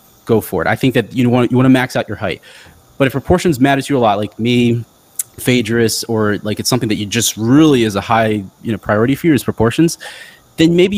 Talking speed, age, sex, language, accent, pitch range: 250 wpm, 30-49, male, English, American, 110-130 Hz